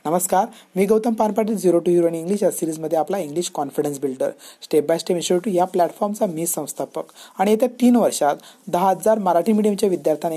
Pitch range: 160-215 Hz